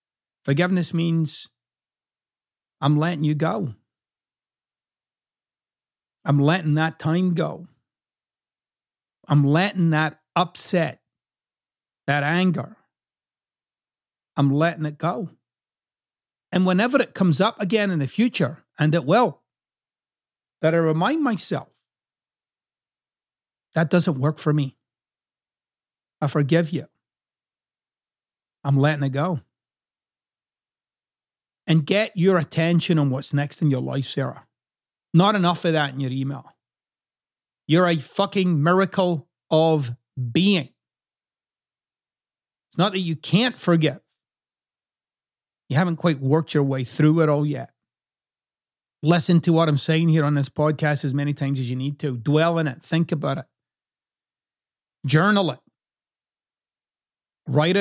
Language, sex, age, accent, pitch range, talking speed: English, male, 50-69, American, 145-175 Hz, 120 wpm